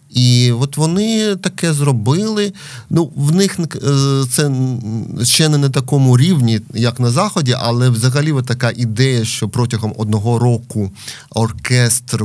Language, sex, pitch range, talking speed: Ukrainian, male, 115-140 Hz, 125 wpm